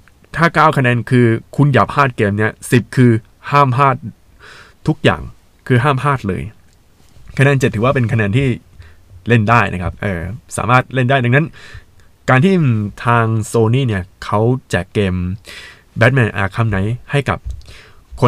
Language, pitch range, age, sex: Thai, 100-135 Hz, 20-39, male